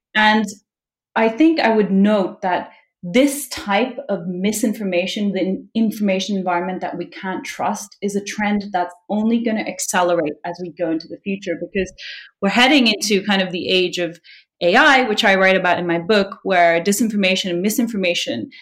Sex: female